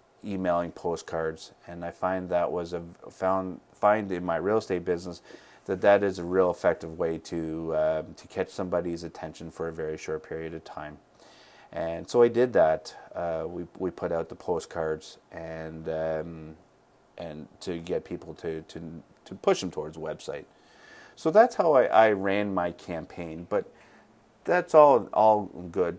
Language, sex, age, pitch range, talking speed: English, male, 30-49, 80-95 Hz, 170 wpm